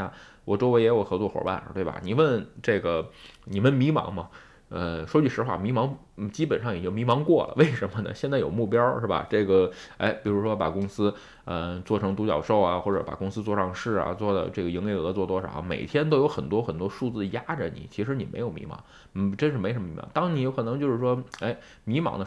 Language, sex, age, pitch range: Chinese, male, 20-39, 100-150 Hz